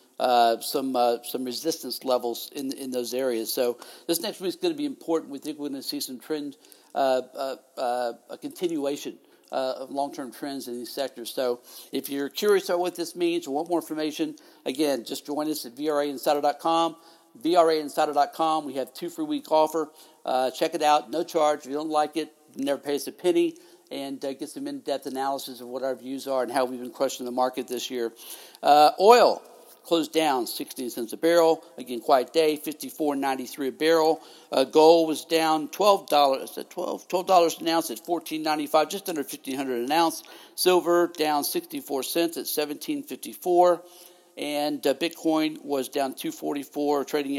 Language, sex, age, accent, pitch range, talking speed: English, male, 60-79, American, 135-175 Hz, 200 wpm